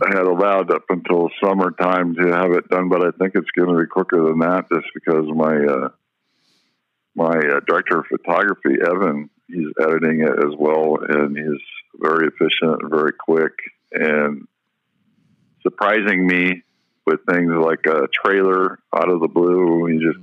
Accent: American